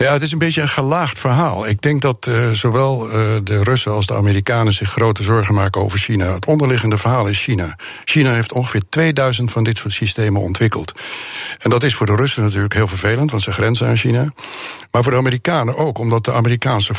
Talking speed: 215 wpm